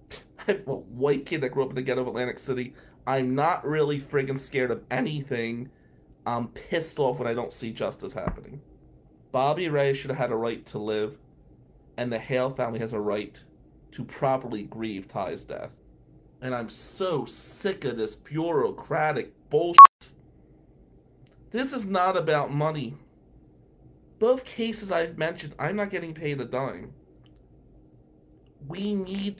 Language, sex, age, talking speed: English, male, 30-49, 155 wpm